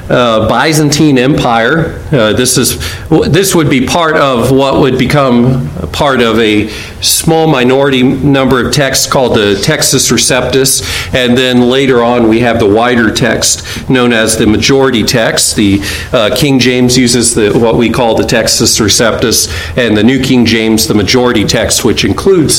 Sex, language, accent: male, English, American